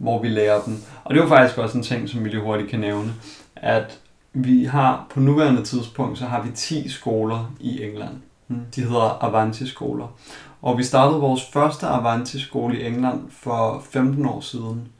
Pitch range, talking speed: 115-140 Hz, 180 wpm